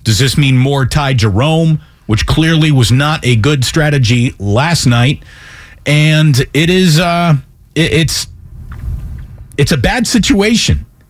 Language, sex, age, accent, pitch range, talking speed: English, male, 40-59, American, 110-160 Hz, 120 wpm